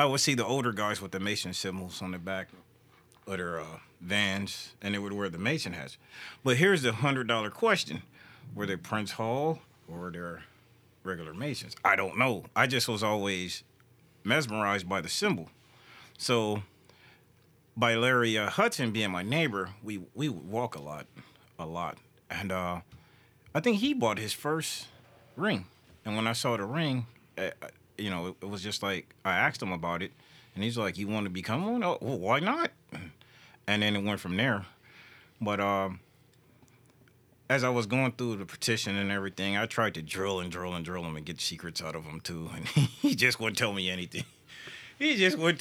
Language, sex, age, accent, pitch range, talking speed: English, male, 40-59, American, 100-135 Hz, 190 wpm